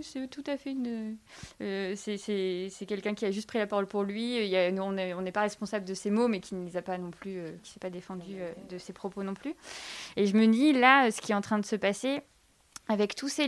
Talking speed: 285 wpm